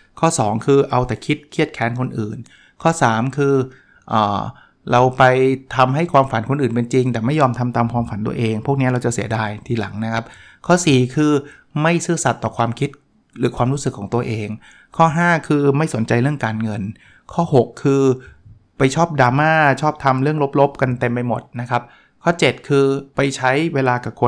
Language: Thai